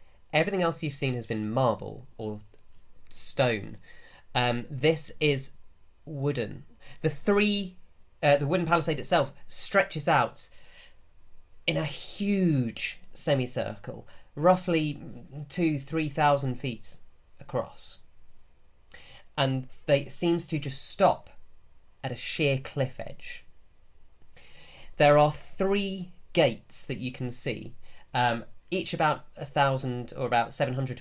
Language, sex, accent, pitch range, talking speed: English, male, British, 110-145 Hz, 110 wpm